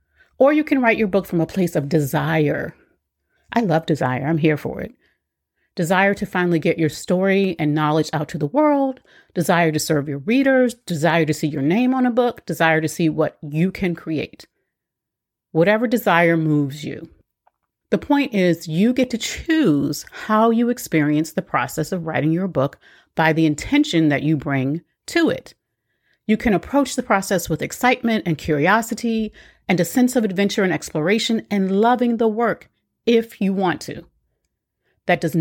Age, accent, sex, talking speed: 40-59, American, female, 175 wpm